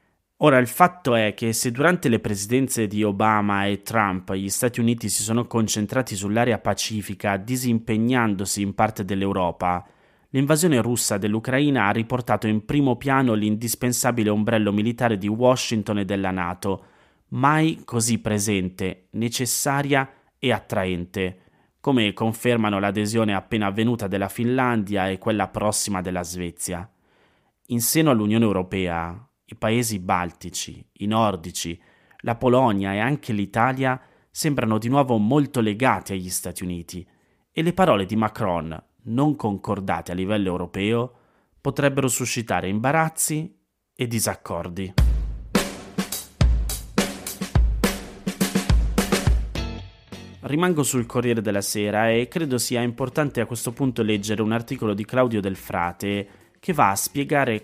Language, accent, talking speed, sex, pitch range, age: Italian, native, 125 wpm, male, 100-125 Hz, 30-49